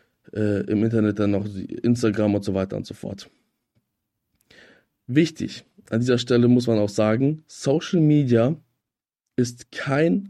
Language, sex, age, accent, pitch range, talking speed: German, male, 20-39, German, 110-140 Hz, 140 wpm